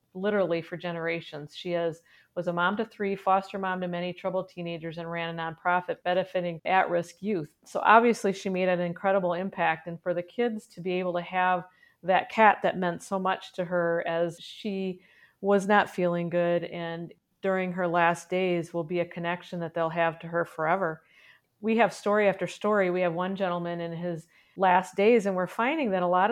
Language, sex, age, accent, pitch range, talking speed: English, female, 40-59, American, 170-195 Hz, 200 wpm